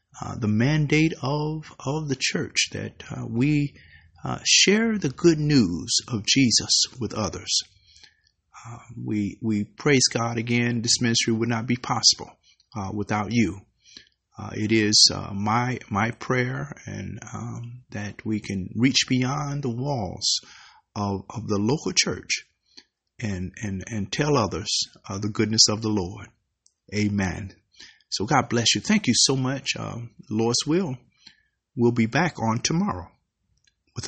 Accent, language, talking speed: American, English, 150 wpm